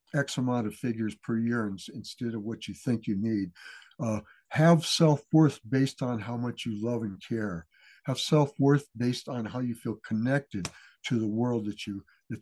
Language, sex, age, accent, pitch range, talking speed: English, male, 60-79, American, 110-140 Hz, 185 wpm